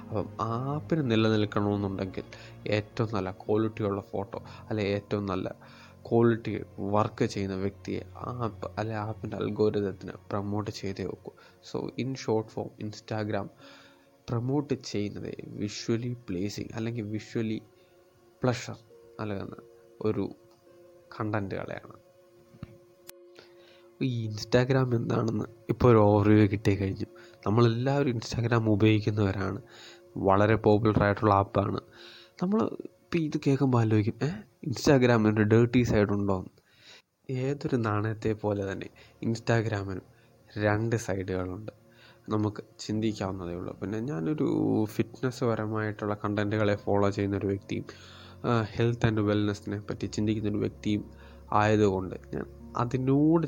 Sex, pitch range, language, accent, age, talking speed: male, 100-120 Hz, Malayalam, native, 20-39, 100 wpm